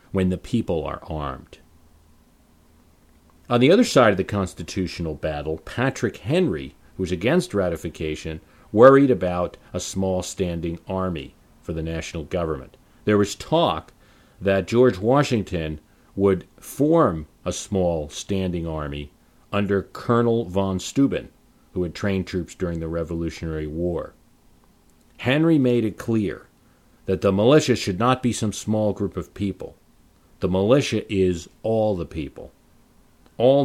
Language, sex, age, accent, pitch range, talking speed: English, male, 40-59, American, 80-110 Hz, 135 wpm